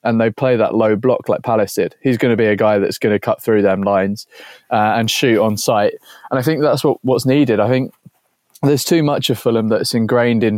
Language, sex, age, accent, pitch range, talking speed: English, male, 20-39, British, 115-130 Hz, 250 wpm